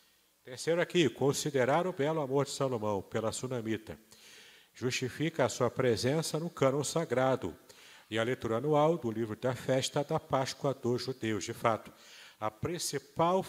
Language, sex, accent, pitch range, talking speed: Portuguese, male, Brazilian, 110-145 Hz, 145 wpm